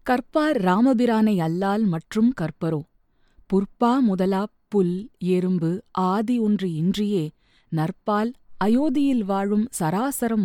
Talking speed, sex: 90 wpm, female